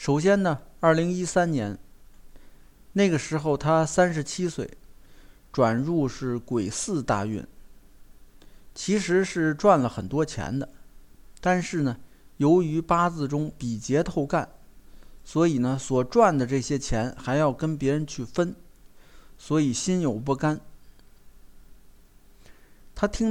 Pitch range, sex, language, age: 125-170 Hz, male, Chinese, 50-69